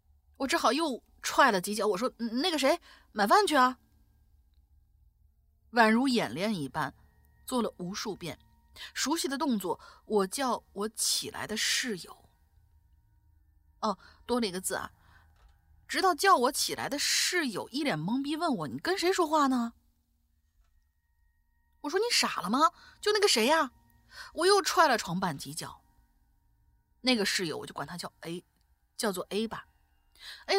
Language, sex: Chinese, female